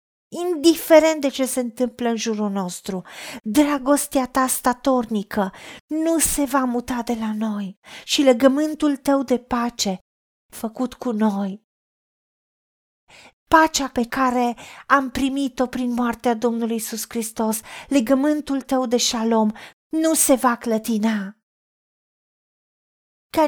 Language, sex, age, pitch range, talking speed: Romanian, female, 40-59, 225-280 Hz, 115 wpm